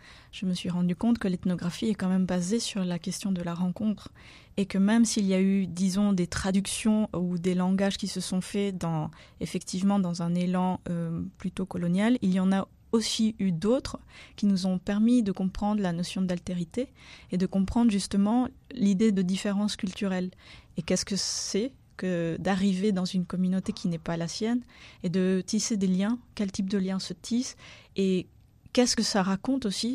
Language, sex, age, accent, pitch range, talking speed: French, female, 20-39, French, 180-210 Hz, 195 wpm